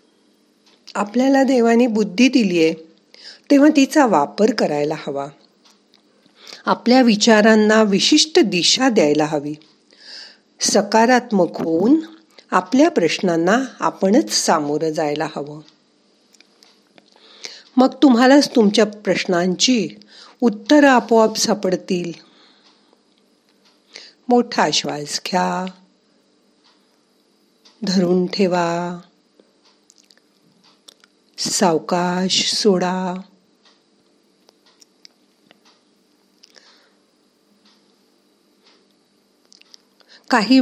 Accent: native